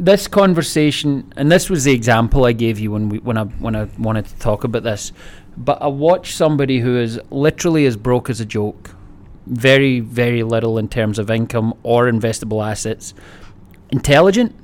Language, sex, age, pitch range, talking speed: English, male, 30-49, 105-125 Hz, 180 wpm